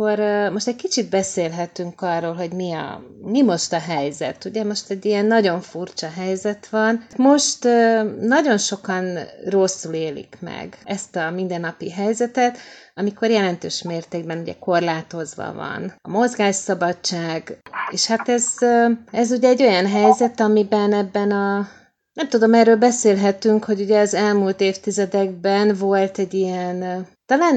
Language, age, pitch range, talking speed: Hungarian, 30-49, 175-215 Hz, 135 wpm